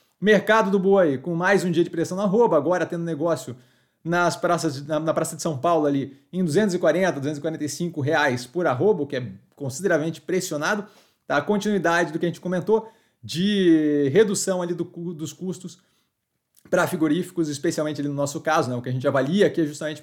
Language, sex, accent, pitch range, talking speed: Portuguese, male, Brazilian, 150-190 Hz, 195 wpm